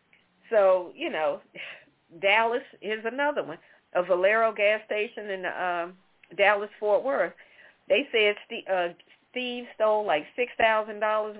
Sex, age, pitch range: female, 40-59, 185-245 Hz